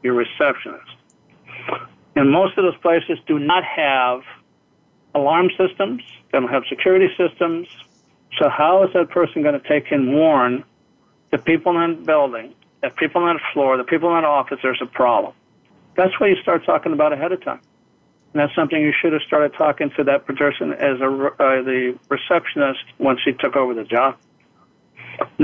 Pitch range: 140-165 Hz